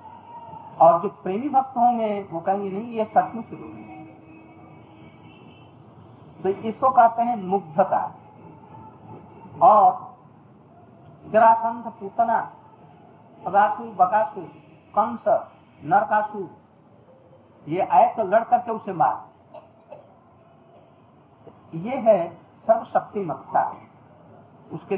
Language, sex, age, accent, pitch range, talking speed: Hindi, male, 50-69, native, 175-235 Hz, 75 wpm